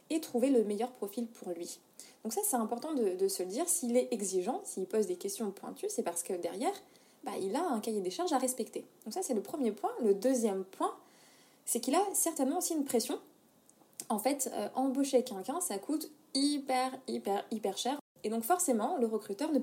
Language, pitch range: French, 200-255 Hz